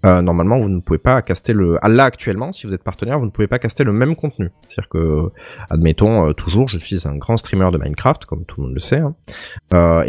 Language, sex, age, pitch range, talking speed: French, male, 20-39, 85-115 Hz, 255 wpm